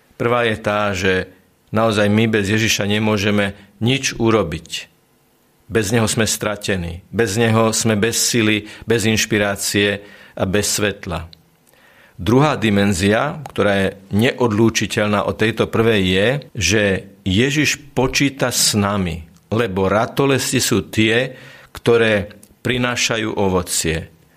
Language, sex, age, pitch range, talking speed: Slovak, male, 50-69, 100-120 Hz, 115 wpm